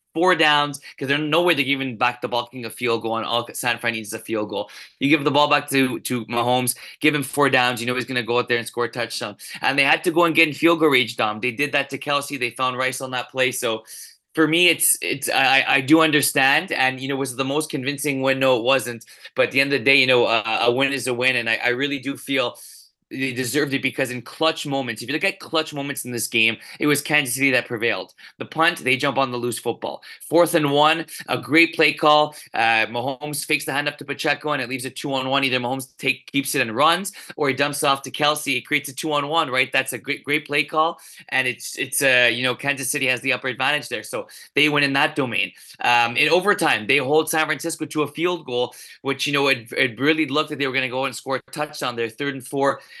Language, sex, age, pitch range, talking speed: English, male, 20-39, 125-150 Hz, 270 wpm